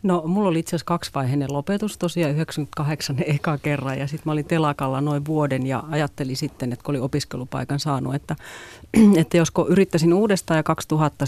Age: 30-49